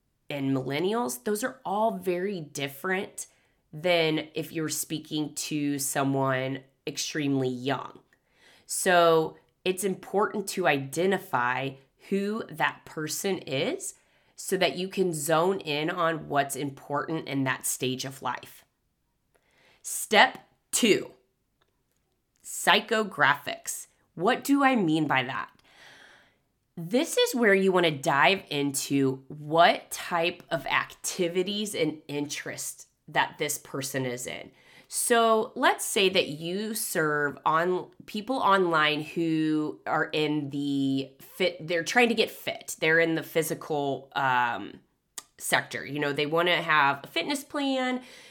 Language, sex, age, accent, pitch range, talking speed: English, female, 20-39, American, 140-190 Hz, 125 wpm